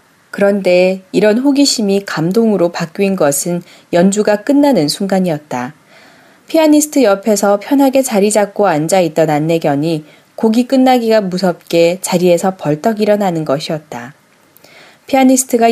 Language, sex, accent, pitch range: Korean, female, native, 165-220 Hz